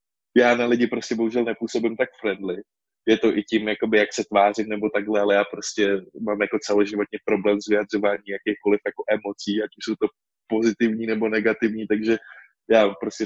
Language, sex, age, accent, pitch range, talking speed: Czech, male, 20-39, native, 105-115 Hz, 180 wpm